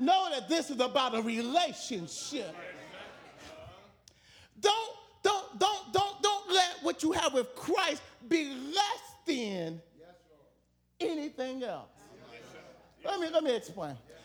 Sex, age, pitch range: male, 40-59, 260-375 Hz